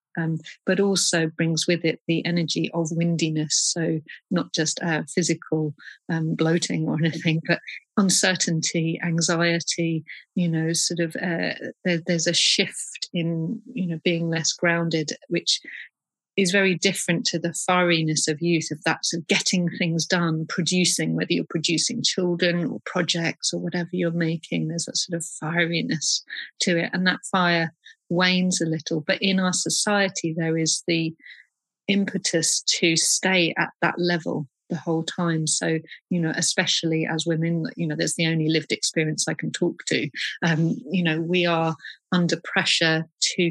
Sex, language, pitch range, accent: female, English, 160-180 Hz, British